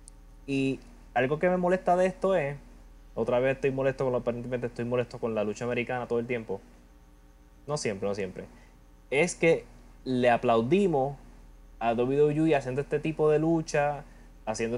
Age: 20-39